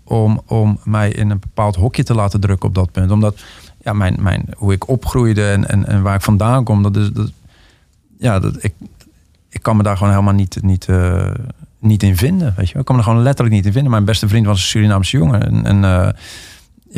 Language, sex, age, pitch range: Dutch, male, 40-59, 95-120 Hz